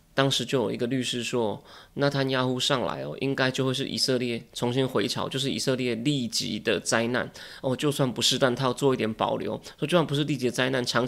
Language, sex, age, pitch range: Chinese, male, 20-39, 125-145 Hz